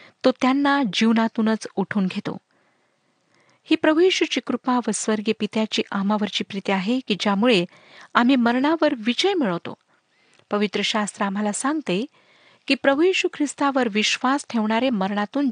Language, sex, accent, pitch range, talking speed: Marathi, female, native, 205-260 Hz, 115 wpm